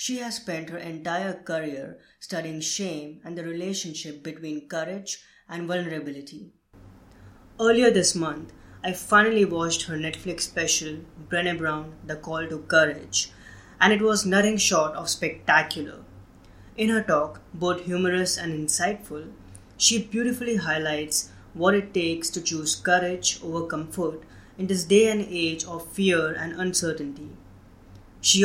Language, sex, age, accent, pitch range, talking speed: English, female, 20-39, Indian, 155-195 Hz, 135 wpm